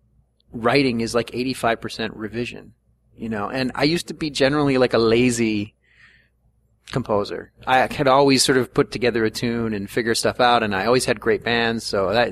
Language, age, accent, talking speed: English, 30-49, American, 185 wpm